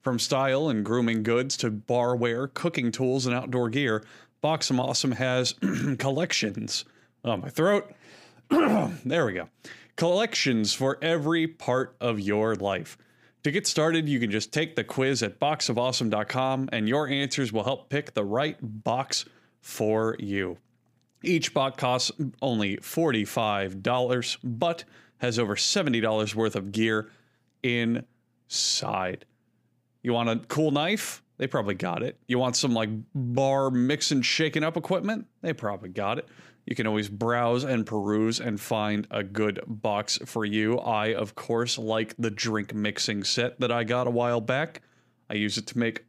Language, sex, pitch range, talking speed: English, male, 110-135 Hz, 155 wpm